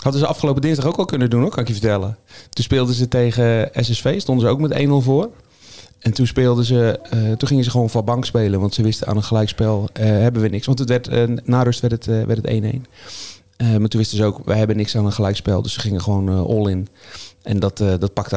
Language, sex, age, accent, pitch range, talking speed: Dutch, male, 40-59, Dutch, 105-125 Hz, 265 wpm